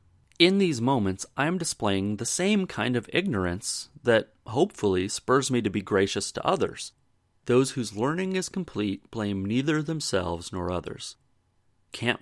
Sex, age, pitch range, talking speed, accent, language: male, 30-49, 95-140 Hz, 150 wpm, American, English